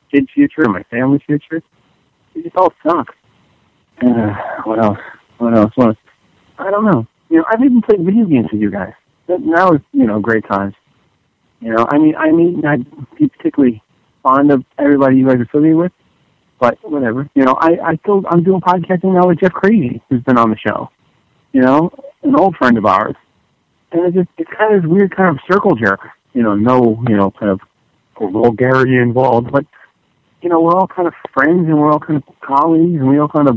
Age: 50-69